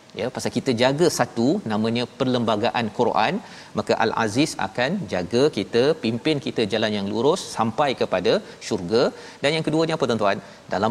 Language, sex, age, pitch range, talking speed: Malayalam, male, 40-59, 110-135 Hz, 155 wpm